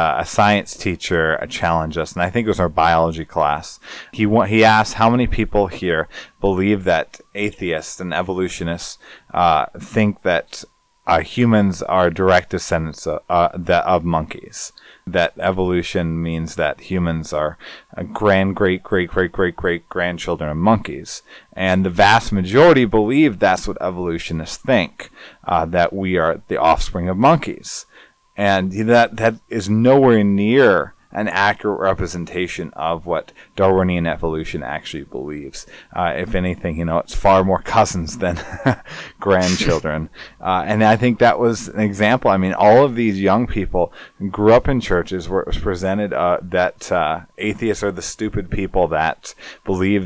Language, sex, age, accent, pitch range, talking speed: English, male, 30-49, American, 90-105 Hz, 145 wpm